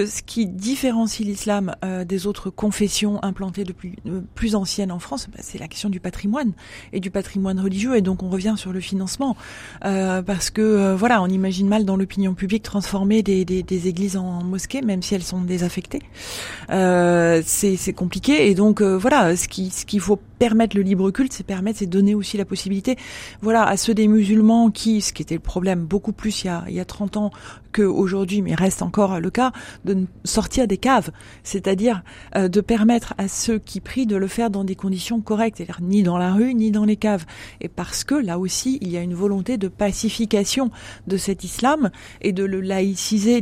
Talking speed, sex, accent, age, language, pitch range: 215 wpm, female, French, 30-49, French, 185-215 Hz